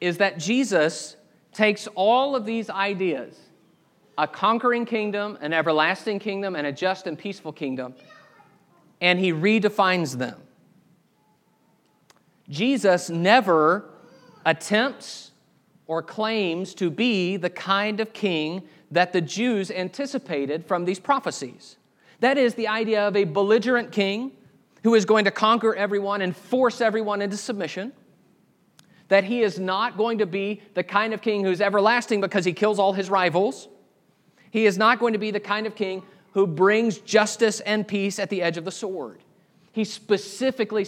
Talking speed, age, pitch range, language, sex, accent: 150 wpm, 40-59, 180-220 Hz, English, male, American